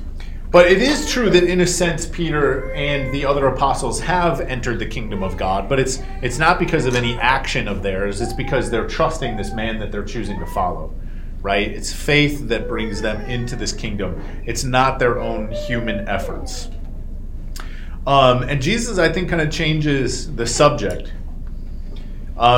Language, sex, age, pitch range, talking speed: English, male, 30-49, 85-145 Hz, 175 wpm